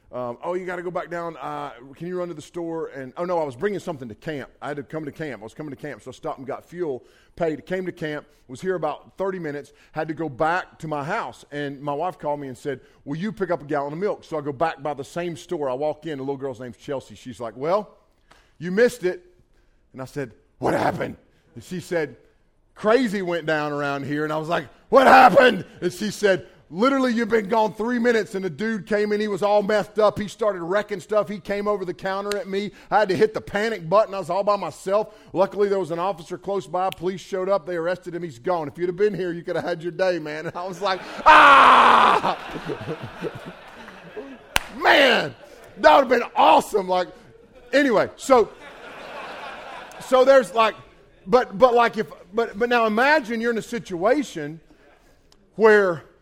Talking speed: 225 wpm